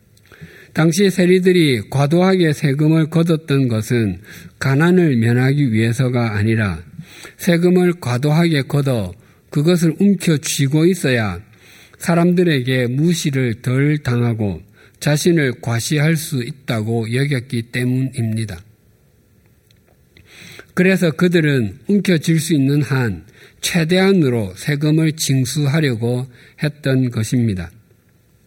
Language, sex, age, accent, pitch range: Korean, male, 50-69, native, 115-165 Hz